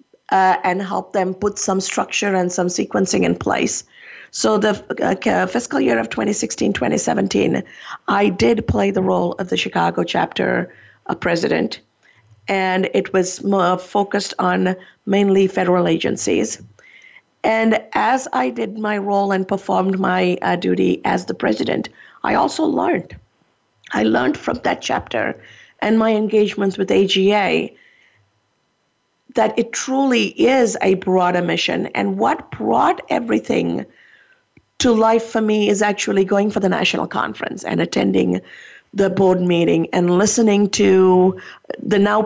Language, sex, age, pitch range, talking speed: English, female, 50-69, 185-225 Hz, 135 wpm